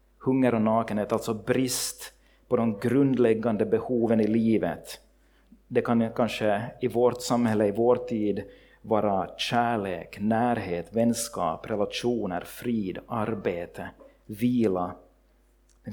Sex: male